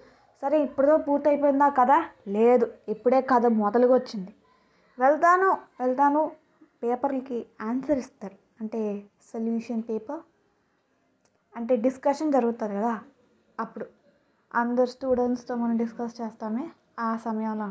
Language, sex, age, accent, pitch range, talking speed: Telugu, female, 20-39, native, 220-270 Hz, 100 wpm